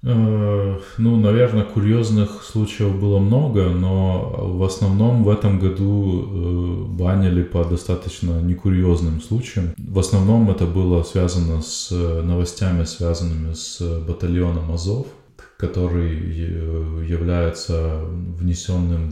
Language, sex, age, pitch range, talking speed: Russian, male, 20-39, 85-100 Hz, 95 wpm